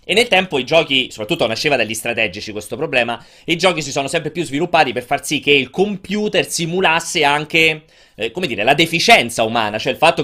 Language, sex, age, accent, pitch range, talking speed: Italian, male, 30-49, native, 125-200 Hz, 205 wpm